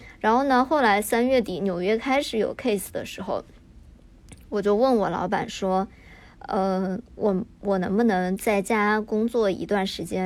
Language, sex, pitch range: Chinese, male, 195-235 Hz